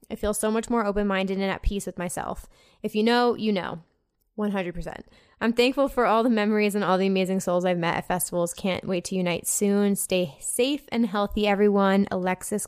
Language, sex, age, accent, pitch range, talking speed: English, female, 20-39, American, 195-230 Hz, 205 wpm